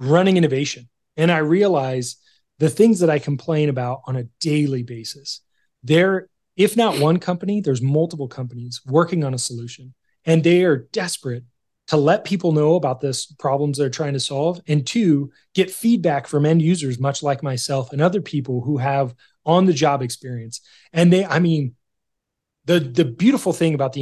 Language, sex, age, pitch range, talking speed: English, male, 30-49, 130-165 Hz, 175 wpm